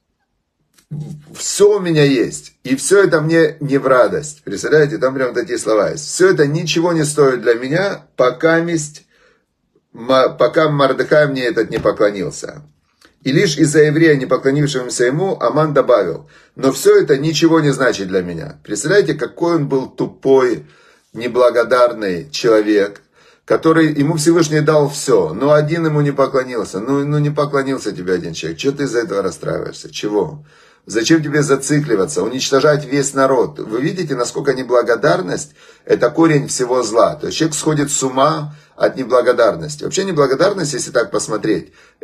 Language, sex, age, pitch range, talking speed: Russian, male, 30-49, 130-160 Hz, 150 wpm